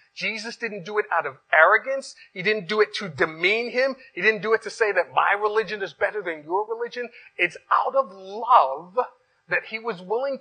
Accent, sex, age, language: American, male, 40-59, English